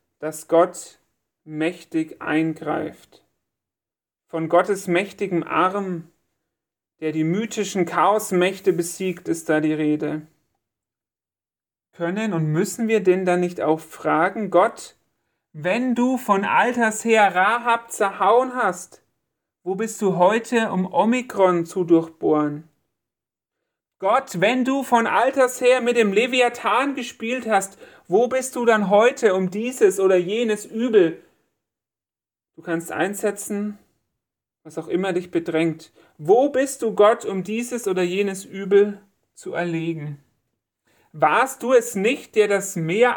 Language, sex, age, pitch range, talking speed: German, male, 40-59, 160-220 Hz, 125 wpm